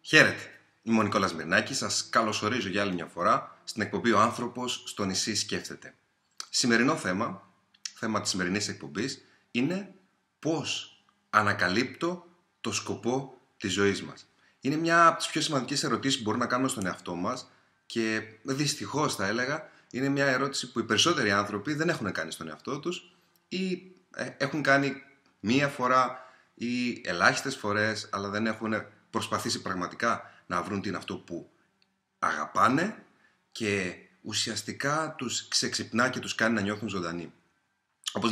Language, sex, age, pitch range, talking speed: Greek, male, 30-49, 105-140 Hz, 145 wpm